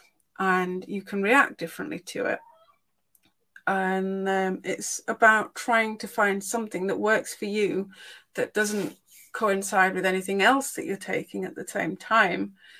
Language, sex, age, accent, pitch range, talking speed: English, female, 30-49, British, 185-215 Hz, 150 wpm